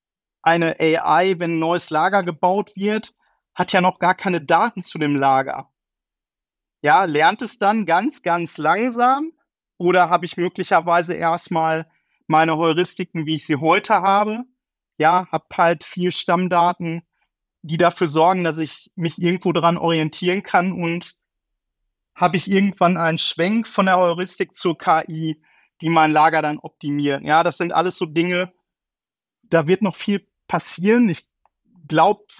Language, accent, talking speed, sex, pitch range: German, German, 150 wpm, male, 155-185 Hz